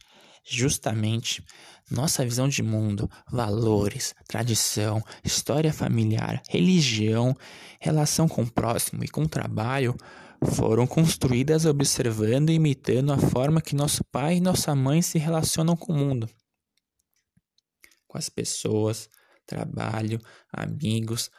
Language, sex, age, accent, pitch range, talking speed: Portuguese, male, 20-39, Brazilian, 110-150 Hz, 115 wpm